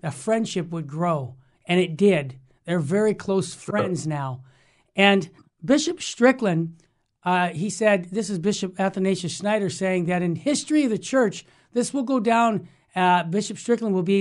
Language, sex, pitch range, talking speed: English, male, 180-225 Hz, 165 wpm